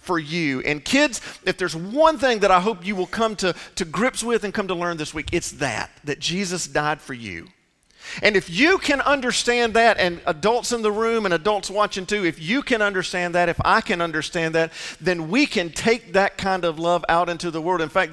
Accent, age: American, 50-69